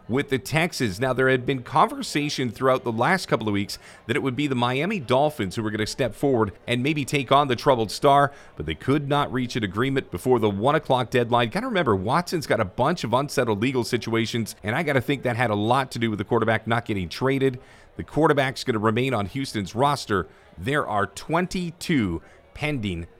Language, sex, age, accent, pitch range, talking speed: English, male, 40-59, American, 115-150 Hz, 215 wpm